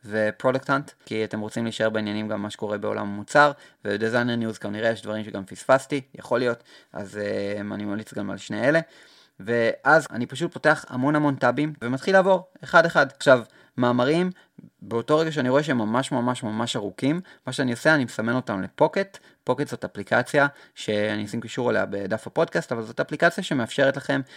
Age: 30-49